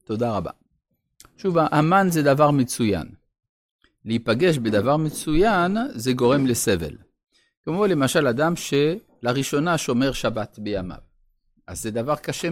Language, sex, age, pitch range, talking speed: Hebrew, male, 50-69, 110-160 Hz, 115 wpm